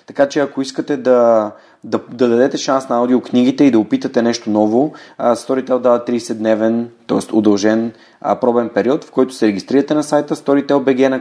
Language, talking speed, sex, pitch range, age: Bulgarian, 170 wpm, male, 110-135 Hz, 30-49